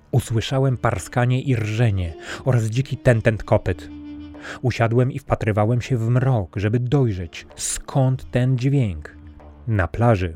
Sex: male